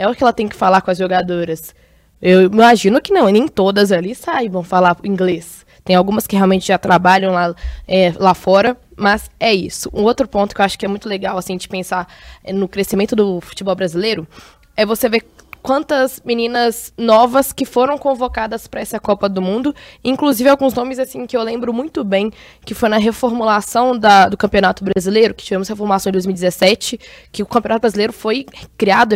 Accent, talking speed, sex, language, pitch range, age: Brazilian, 185 wpm, female, Portuguese, 195-240 Hz, 10-29